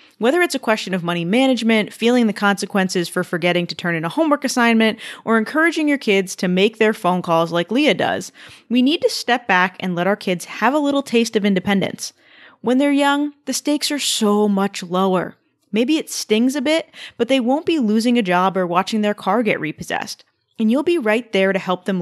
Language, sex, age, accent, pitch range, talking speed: English, female, 20-39, American, 190-265 Hz, 220 wpm